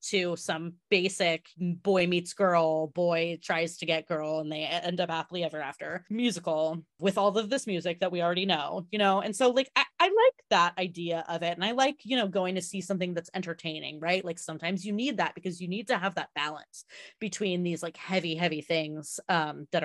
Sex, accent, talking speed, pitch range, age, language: female, American, 220 wpm, 160-195 Hz, 30-49, English